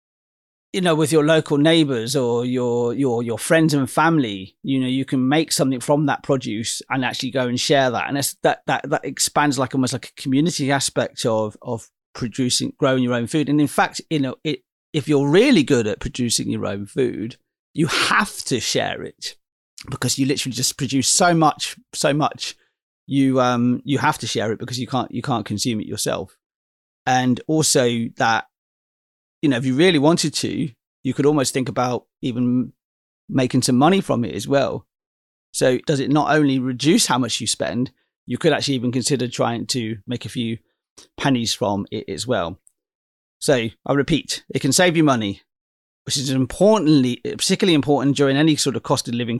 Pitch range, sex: 120-145 Hz, male